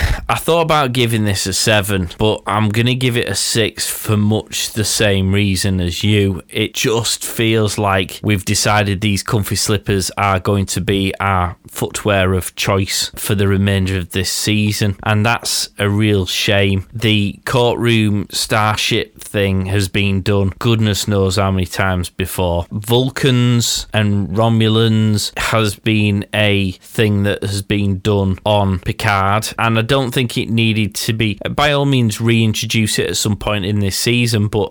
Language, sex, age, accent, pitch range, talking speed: English, male, 20-39, British, 95-110 Hz, 165 wpm